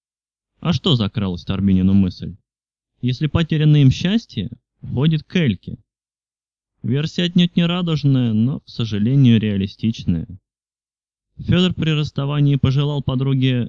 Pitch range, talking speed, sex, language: 105-140 Hz, 110 wpm, male, Russian